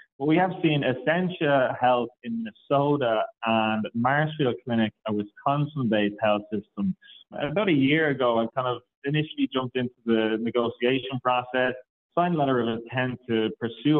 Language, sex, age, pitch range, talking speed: English, male, 30-49, 115-140 Hz, 150 wpm